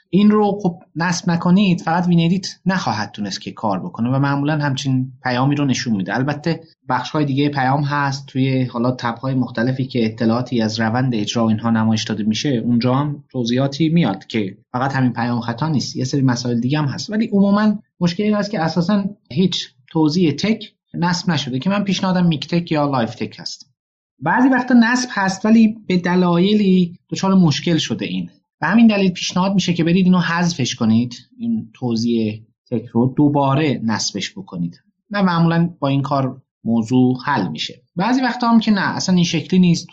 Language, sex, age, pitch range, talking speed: Persian, male, 30-49, 125-180 Hz, 180 wpm